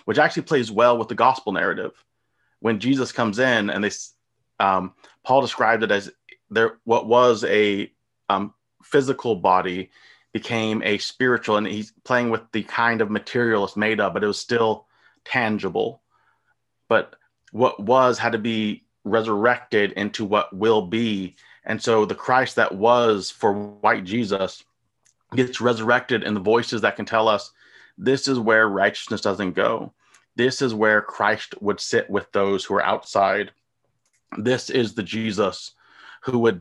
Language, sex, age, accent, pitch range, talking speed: English, male, 30-49, American, 100-120 Hz, 160 wpm